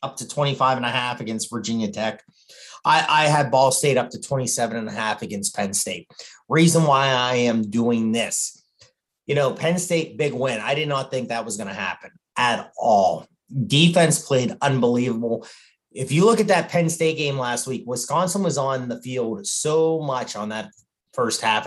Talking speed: 195 wpm